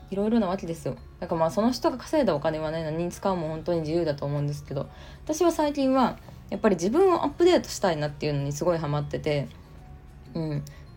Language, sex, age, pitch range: Japanese, female, 20-39, 145-230 Hz